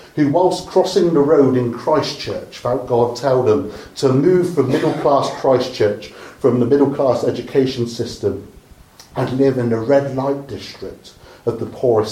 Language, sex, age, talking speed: English, male, 40-59, 165 wpm